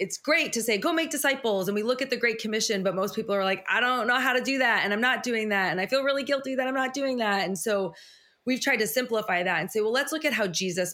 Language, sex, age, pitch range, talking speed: English, female, 20-39, 185-230 Hz, 305 wpm